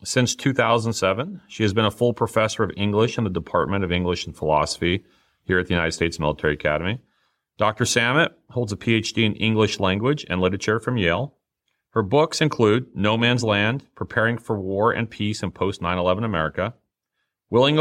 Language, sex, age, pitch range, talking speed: English, male, 40-59, 90-115 Hz, 170 wpm